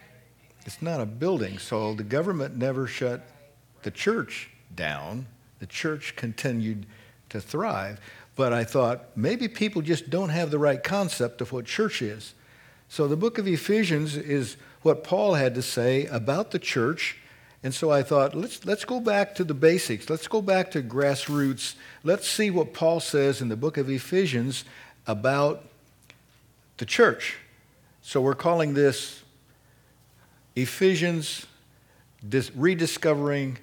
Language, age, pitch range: English, 60-79, 125-160 Hz